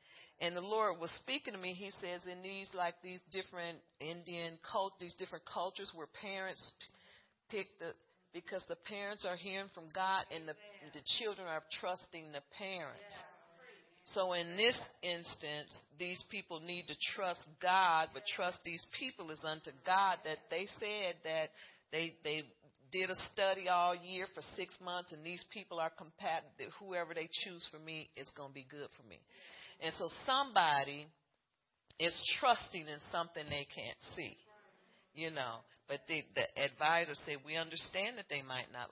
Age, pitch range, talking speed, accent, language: 40-59, 155-195 Hz, 175 wpm, American, English